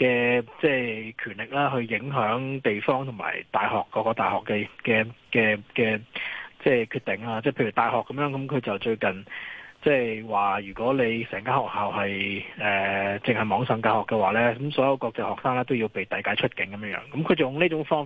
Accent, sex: native, male